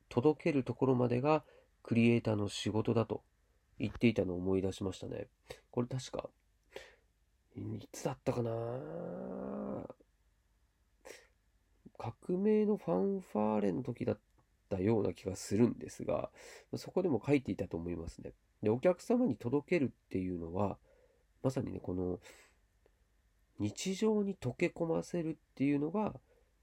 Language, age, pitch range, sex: Japanese, 40-59, 100-155 Hz, male